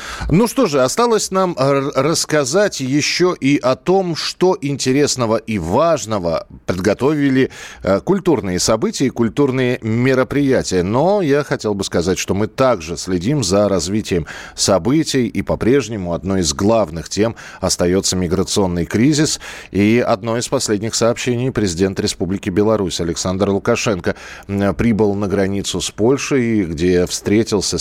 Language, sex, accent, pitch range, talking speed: Russian, male, native, 90-125 Hz, 125 wpm